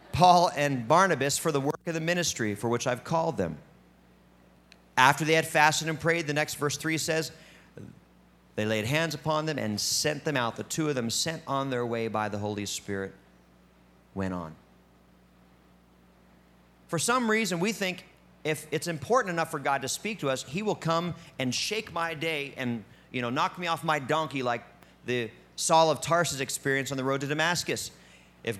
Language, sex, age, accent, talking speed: English, male, 40-59, American, 190 wpm